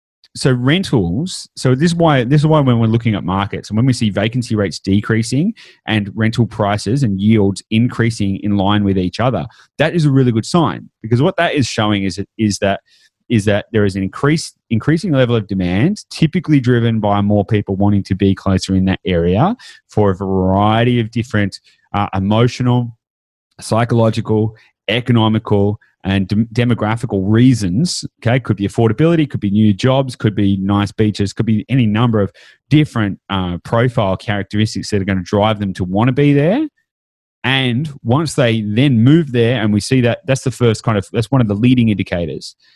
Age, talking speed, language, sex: 30-49, 190 wpm, English, male